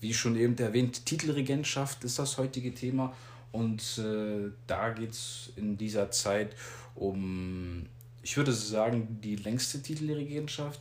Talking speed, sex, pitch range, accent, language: 135 wpm, male, 110-120 Hz, German, German